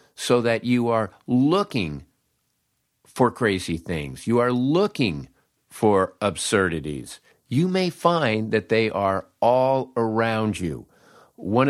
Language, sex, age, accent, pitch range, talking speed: English, male, 50-69, American, 95-140 Hz, 120 wpm